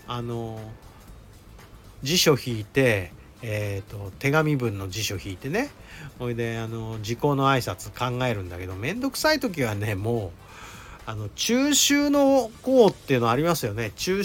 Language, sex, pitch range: Japanese, male, 105-155 Hz